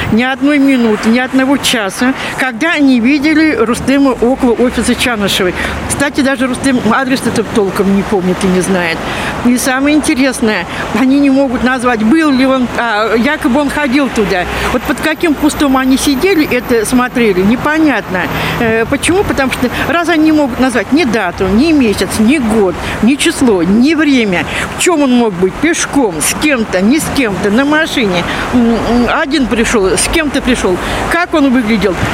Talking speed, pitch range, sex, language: 160 wpm, 225-285 Hz, female, Russian